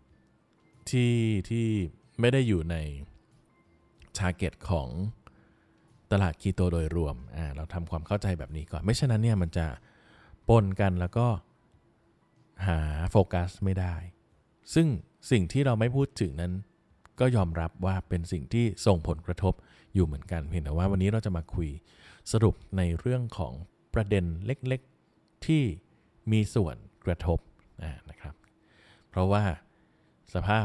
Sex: male